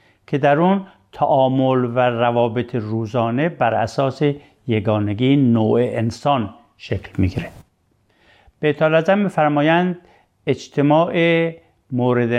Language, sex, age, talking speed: Persian, male, 60-79, 100 wpm